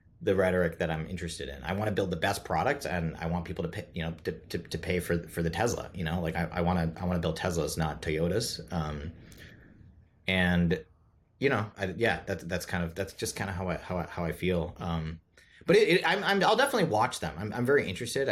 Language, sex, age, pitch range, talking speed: English, male, 30-49, 85-105 Hz, 250 wpm